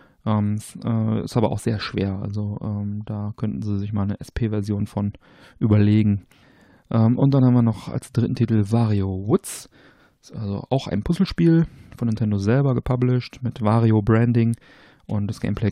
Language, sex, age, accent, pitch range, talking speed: German, male, 40-59, German, 105-115 Hz, 170 wpm